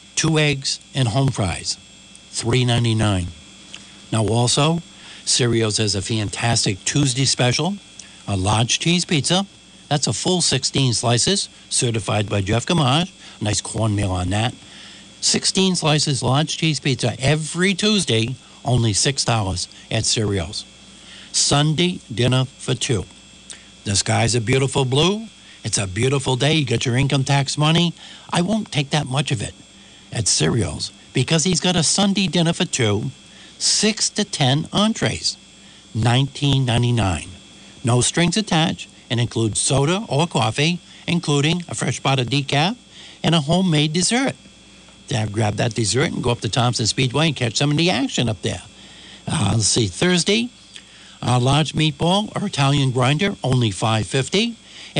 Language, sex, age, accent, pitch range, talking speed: English, male, 60-79, American, 115-160 Hz, 145 wpm